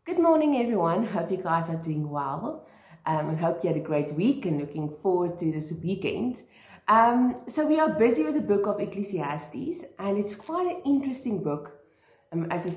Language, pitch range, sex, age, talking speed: English, 160-215 Hz, female, 30-49, 195 wpm